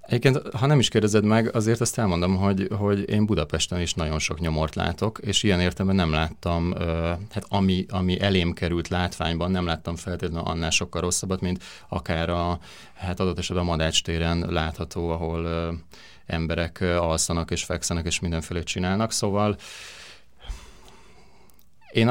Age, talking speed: 30-49, 145 wpm